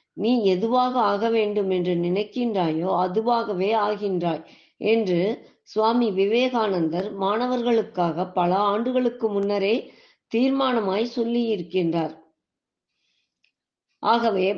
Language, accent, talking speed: Tamil, native, 80 wpm